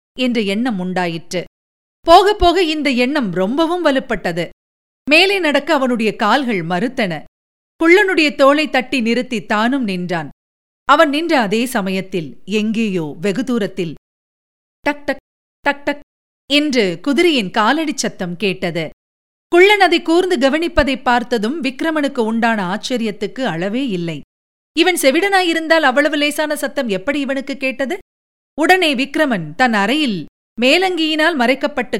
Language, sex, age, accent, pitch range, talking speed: Tamil, female, 50-69, native, 210-290 Hz, 110 wpm